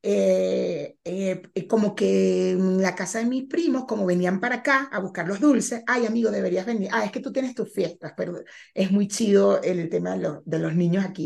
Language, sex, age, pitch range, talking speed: Spanish, female, 30-49, 200-255 Hz, 215 wpm